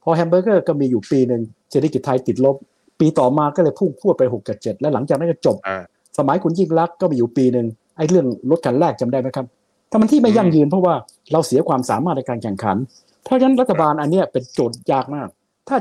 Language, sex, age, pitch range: Thai, male, 60-79, 125-180 Hz